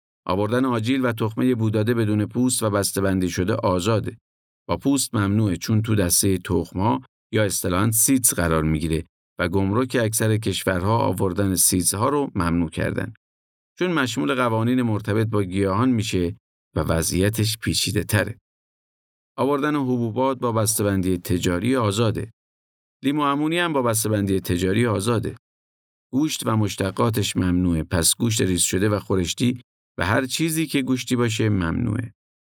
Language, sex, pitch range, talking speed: Persian, male, 90-120 Hz, 135 wpm